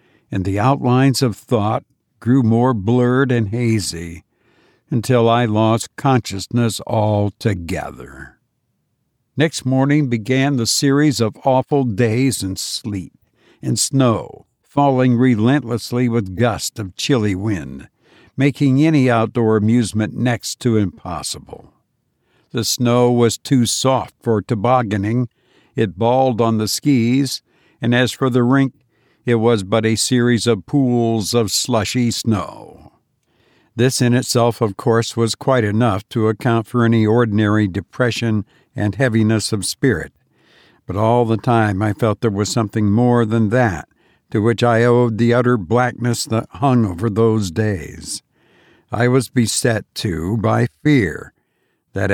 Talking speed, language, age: 135 wpm, English, 60-79